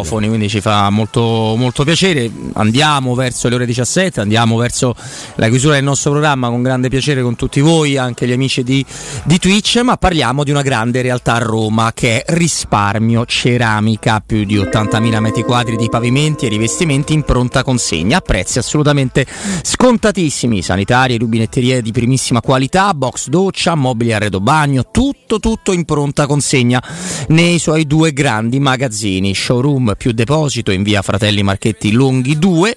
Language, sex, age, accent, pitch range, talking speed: Italian, male, 30-49, native, 110-155 Hz, 155 wpm